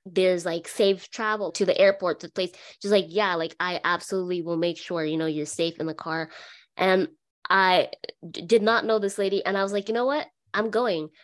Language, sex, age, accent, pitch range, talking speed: English, female, 20-39, American, 180-215 Hz, 230 wpm